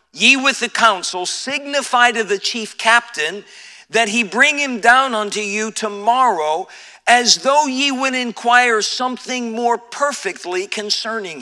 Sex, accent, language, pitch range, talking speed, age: male, American, English, 190-245 Hz, 135 wpm, 50-69